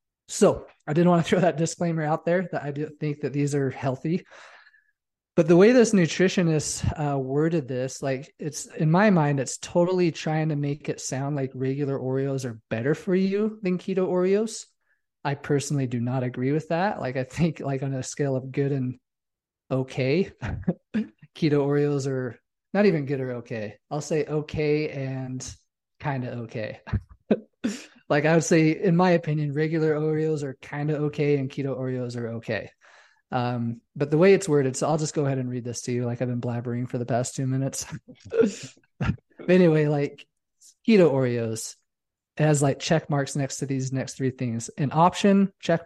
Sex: male